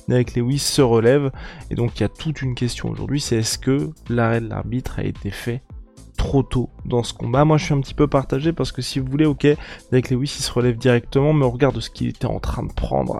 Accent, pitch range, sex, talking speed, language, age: French, 125-150 Hz, male, 250 wpm, French, 20-39